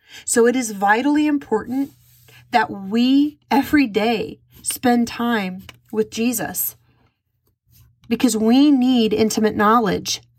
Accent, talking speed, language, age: American, 105 wpm, English, 30-49